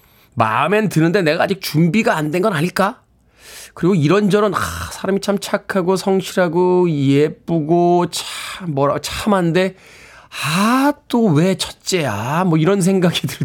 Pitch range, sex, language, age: 125-175 Hz, male, Korean, 20-39